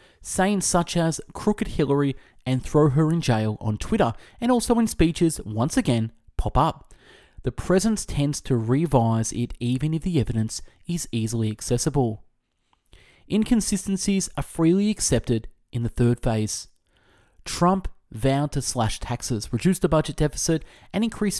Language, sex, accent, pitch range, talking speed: English, male, Australian, 115-165 Hz, 145 wpm